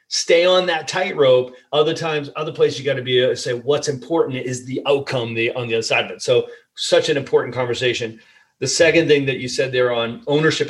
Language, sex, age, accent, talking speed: English, male, 30-49, American, 215 wpm